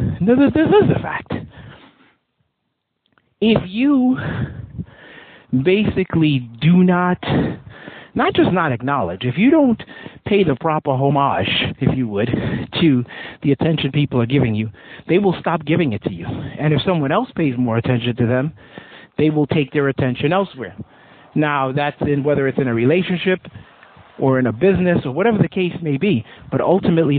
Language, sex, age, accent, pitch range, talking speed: English, male, 50-69, American, 130-175 Hz, 160 wpm